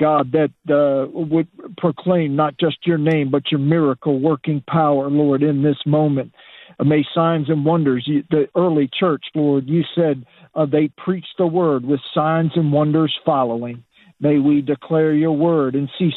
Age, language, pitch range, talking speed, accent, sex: 50-69, English, 145-170 Hz, 170 wpm, American, male